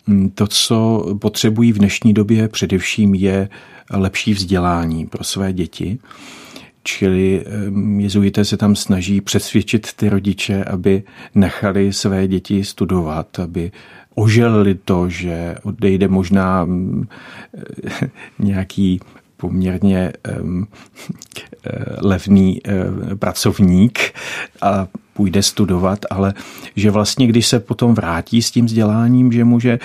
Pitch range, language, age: 90-105 Hz, Czech, 50-69